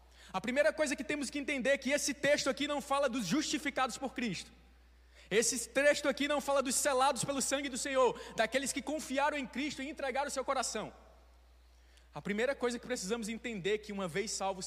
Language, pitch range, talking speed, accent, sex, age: Portuguese, 185-255 Hz, 205 wpm, Brazilian, male, 20-39